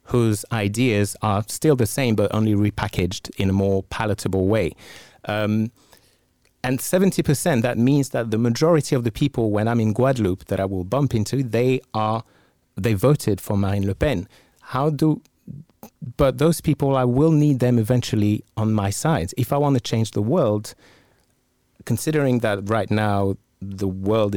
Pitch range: 100-125 Hz